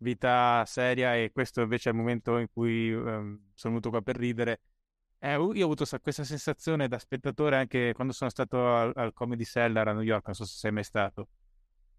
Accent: native